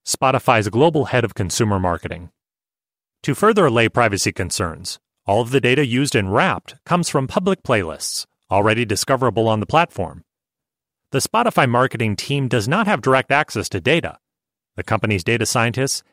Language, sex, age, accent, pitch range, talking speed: English, male, 30-49, American, 110-145 Hz, 155 wpm